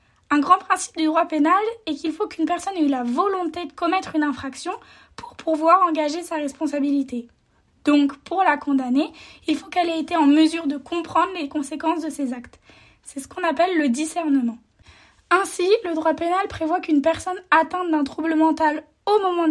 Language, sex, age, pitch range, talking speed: French, female, 10-29, 290-350 Hz, 190 wpm